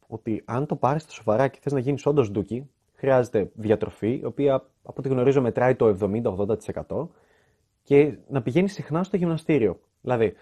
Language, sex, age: Greek, male, 20-39